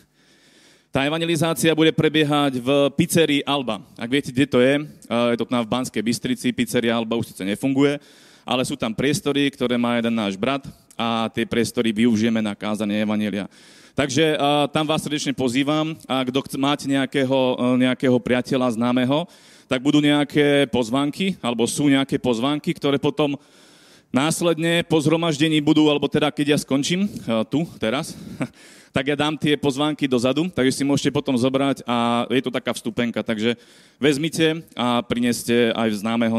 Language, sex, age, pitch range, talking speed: Slovak, male, 30-49, 120-145 Hz, 150 wpm